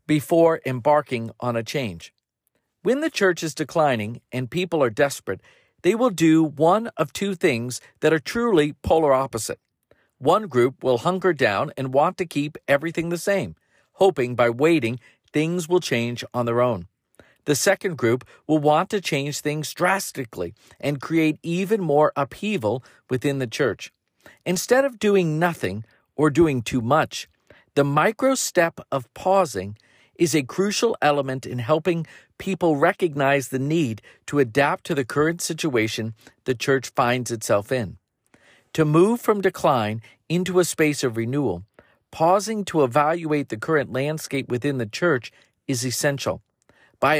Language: English